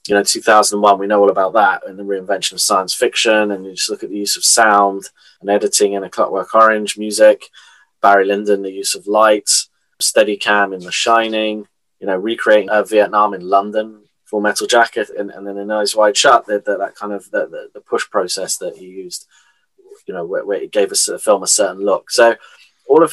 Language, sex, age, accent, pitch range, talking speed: English, male, 20-39, British, 100-135 Hz, 220 wpm